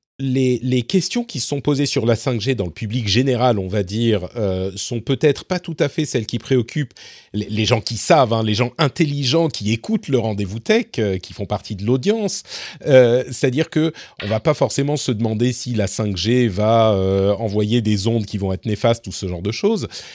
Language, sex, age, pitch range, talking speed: French, male, 40-59, 105-145 Hz, 215 wpm